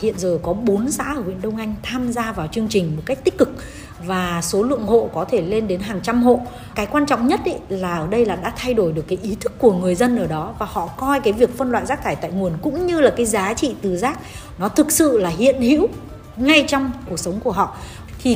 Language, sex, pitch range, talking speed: Vietnamese, female, 190-245 Hz, 260 wpm